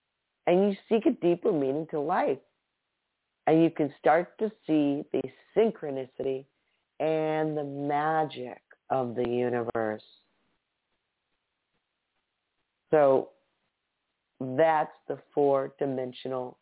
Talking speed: 95 wpm